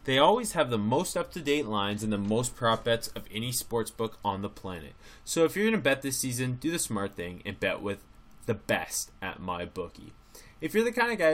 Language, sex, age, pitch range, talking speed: English, male, 20-39, 100-130 Hz, 245 wpm